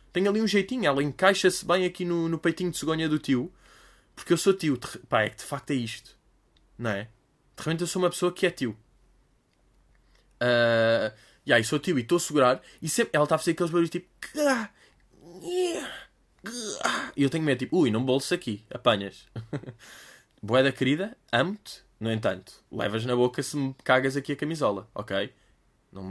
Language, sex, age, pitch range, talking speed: Portuguese, male, 20-39, 115-170 Hz, 190 wpm